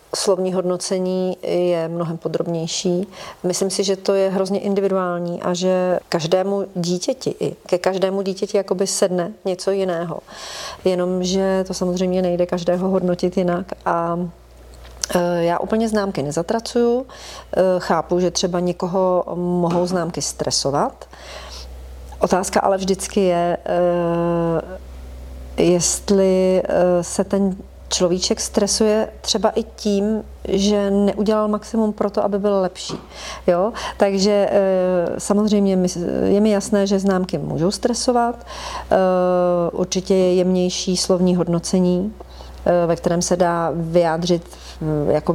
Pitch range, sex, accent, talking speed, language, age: 175-195 Hz, female, native, 110 wpm, Czech, 40-59